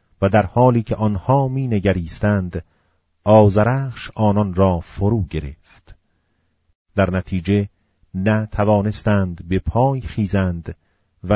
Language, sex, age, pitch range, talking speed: Persian, male, 40-59, 85-115 Hz, 100 wpm